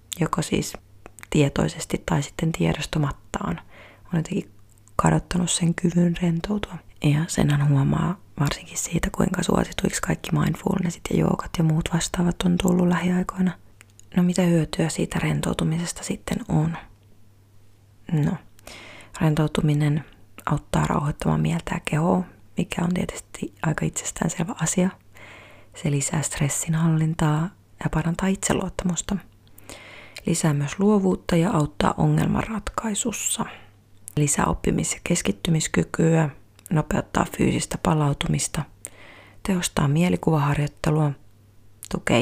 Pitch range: 110-175 Hz